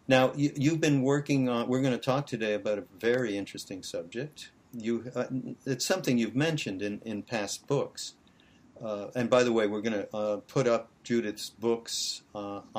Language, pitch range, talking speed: English, 105-130 Hz, 180 wpm